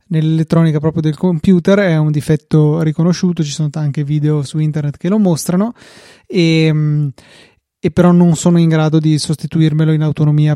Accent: native